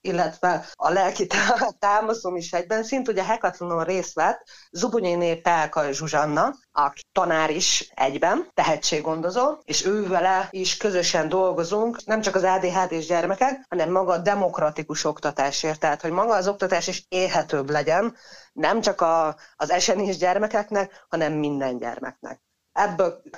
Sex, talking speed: female, 125 wpm